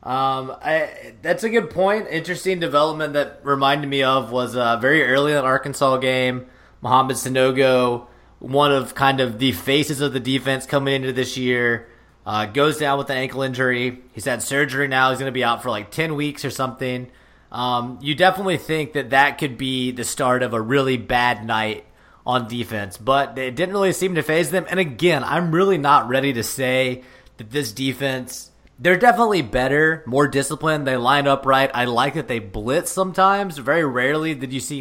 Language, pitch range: English, 125-145 Hz